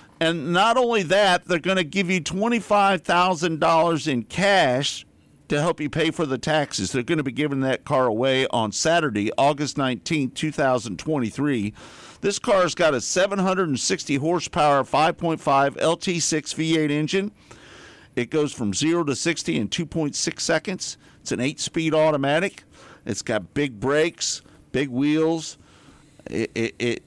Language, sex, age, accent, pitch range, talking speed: English, male, 50-69, American, 115-165 Hz, 140 wpm